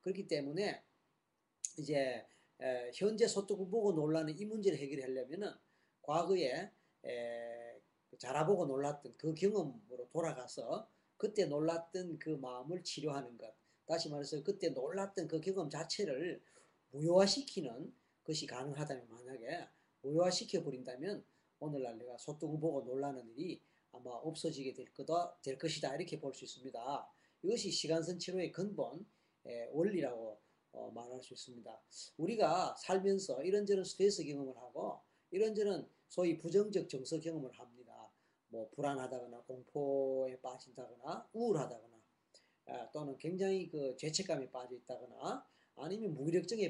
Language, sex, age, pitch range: Korean, male, 40-59, 130-180 Hz